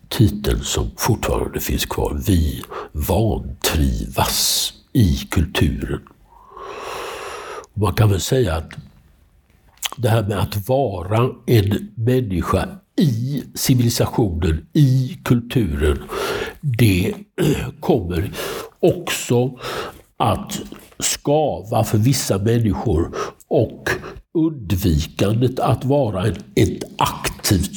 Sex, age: male, 60-79